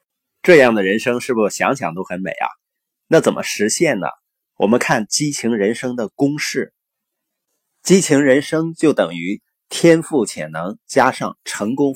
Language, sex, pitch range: Chinese, male, 115-165 Hz